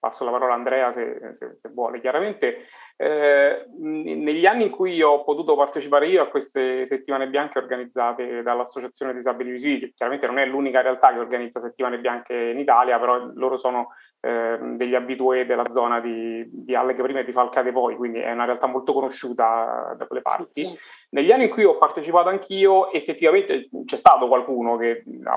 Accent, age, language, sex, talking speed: native, 30-49, Italian, male, 180 wpm